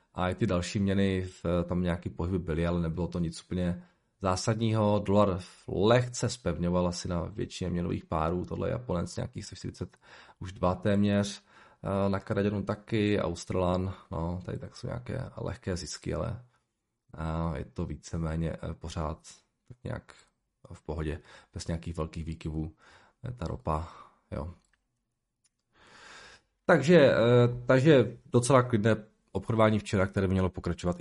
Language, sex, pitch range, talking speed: Czech, male, 85-115 Hz, 135 wpm